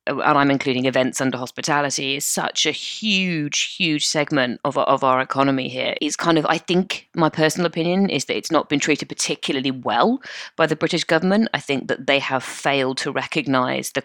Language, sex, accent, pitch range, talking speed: English, female, British, 125-145 Hz, 195 wpm